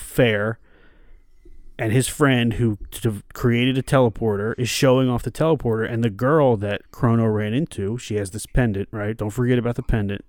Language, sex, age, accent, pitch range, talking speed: English, male, 30-49, American, 105-125 Hz, 180 wpm